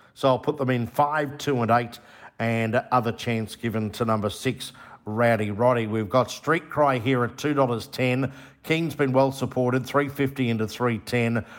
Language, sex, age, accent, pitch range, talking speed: English, male, 50-69, Australian, 115-140 Hz, 185 wpm